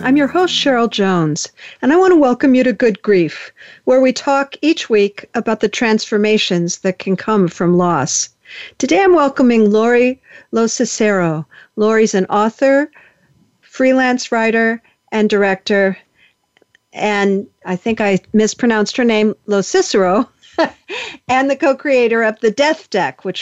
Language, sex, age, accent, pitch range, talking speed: English, female, 50-69, American, 200-260 Hz, 140 wpm